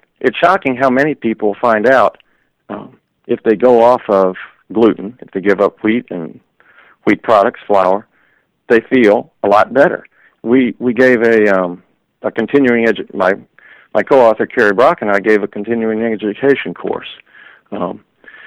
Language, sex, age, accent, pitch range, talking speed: English, male, 50-69, American, 100-125 Hz, 160 wpm